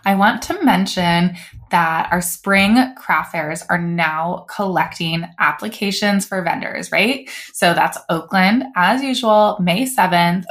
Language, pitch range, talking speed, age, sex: English, 180-220 Hz, 130 wpm, 20-39, female